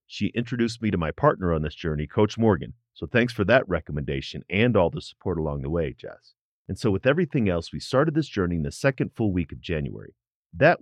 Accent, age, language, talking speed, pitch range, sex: American, 40-59, English, 225 wpm, 85-120 Hz, male